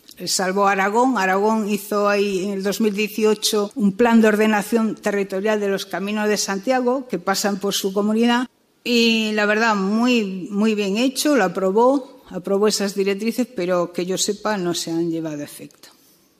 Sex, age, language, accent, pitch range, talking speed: female, 60-79, Spanish, Spanish, 185-235 Hz, 165 wpm